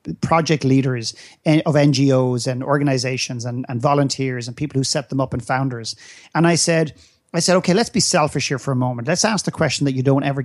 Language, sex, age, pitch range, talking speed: English, male, 40-59, 135-180 Hz, 220 wpm